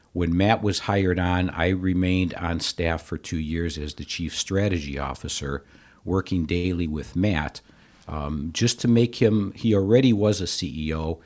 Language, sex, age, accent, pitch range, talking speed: English, male, 60-79, American, 80-95 Hz, 165 wpm